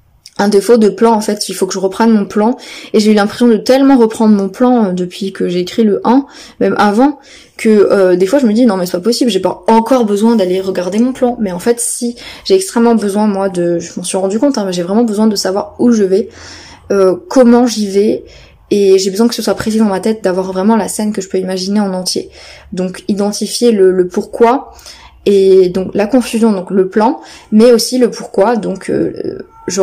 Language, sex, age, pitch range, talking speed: French, female, 20-39, 190-230 Hz, 235 wpm